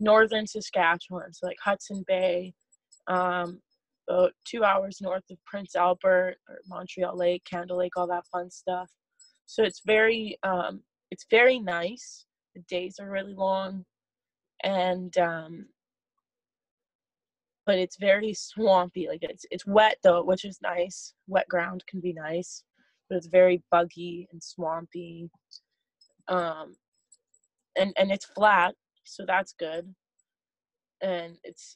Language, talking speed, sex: English, 130 wpm, female